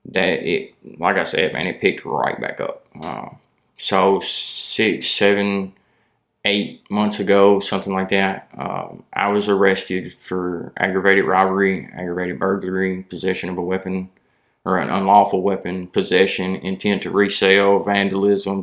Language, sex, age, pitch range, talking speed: English, male, 20-39, 95-100 Hz, 140 wpm